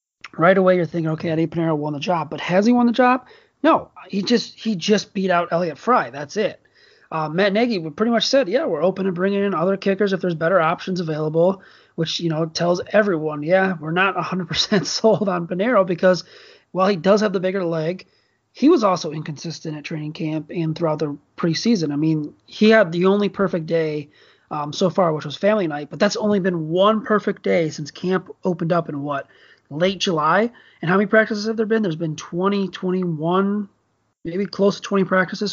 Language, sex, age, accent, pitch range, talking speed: English, male, 30-49, American, 160-195 Hz, 210 wpm